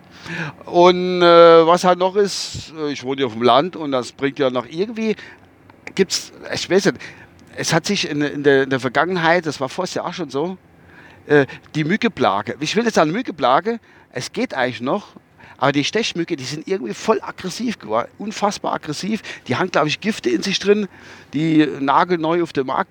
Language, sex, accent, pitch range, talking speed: German, male, German, 135-180 Hz, 195 wpm